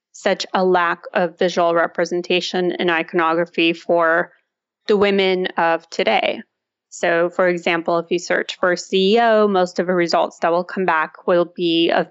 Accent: American